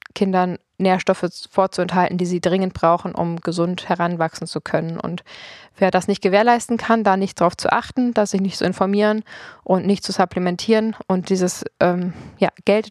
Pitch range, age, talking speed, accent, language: 175-200 Hz, 20-39, 175 wpm, German, German